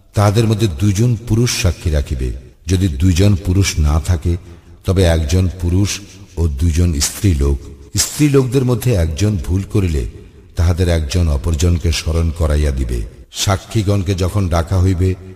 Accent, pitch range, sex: native, 80-105 Hz, male